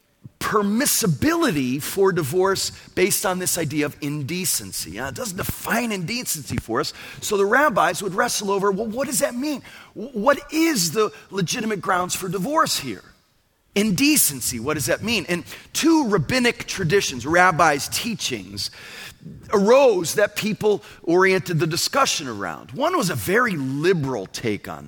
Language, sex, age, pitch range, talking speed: English, male, 40-59, 135-215 Hz, 140 wpm